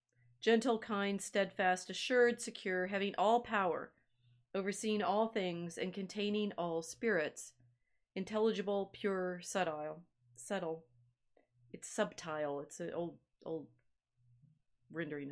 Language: English